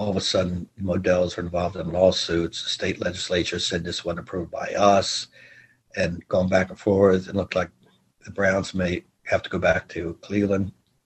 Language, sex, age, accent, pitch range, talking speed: English, male, 60-79, American, 90-100 Hz, 190 wpm